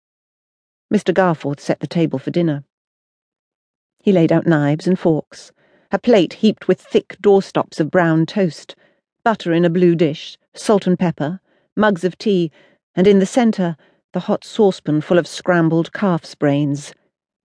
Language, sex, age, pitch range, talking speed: English, female, 40-59, 155-200 Hz, 155 wpm